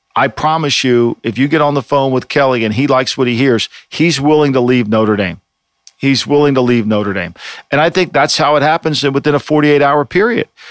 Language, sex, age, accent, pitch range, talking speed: English, male, 50-69, American, 125-155 Hz, 225 wpm